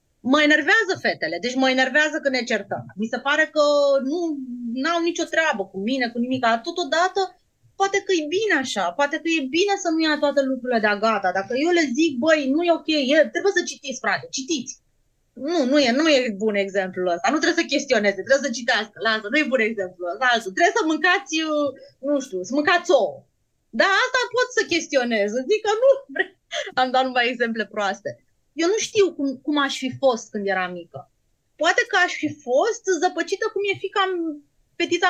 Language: Romanian